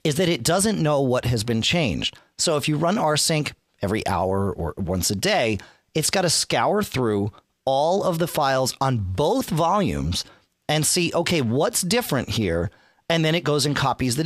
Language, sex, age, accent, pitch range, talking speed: English, male, 40-59, American, 125-180 Hz, 190 wpm